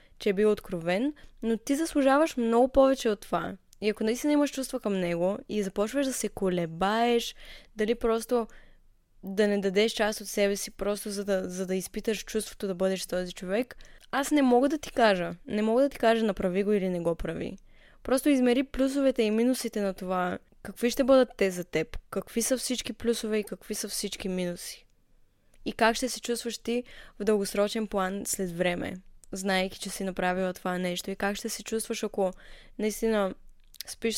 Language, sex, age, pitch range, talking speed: Bulgarian, female, 20-39, 190-235 Hz, 190 wpm